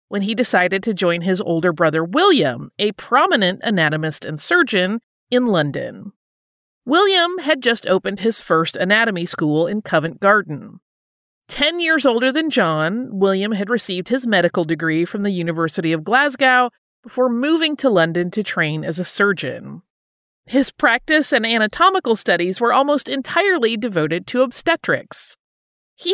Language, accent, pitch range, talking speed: English, American, 180-270 Hz, 145 wpm